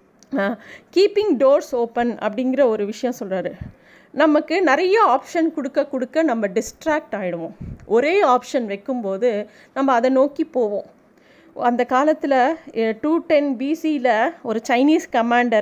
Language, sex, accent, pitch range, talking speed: Tamil, female, native, 235-310 Hz, 115 wpm